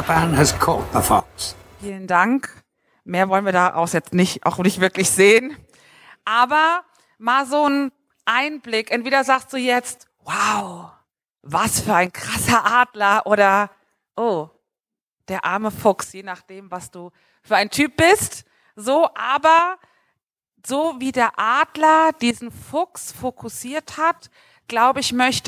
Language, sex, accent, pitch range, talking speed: German, female, German, 195-260 Hz, 130 wpm